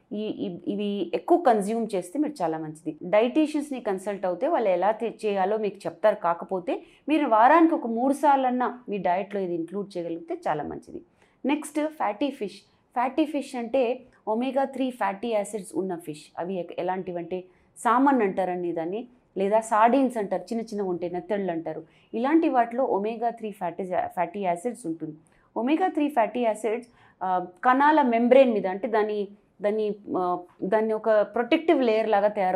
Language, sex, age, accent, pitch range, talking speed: English, female, 30-49, Indian, 175-240 Hz, 90 wpm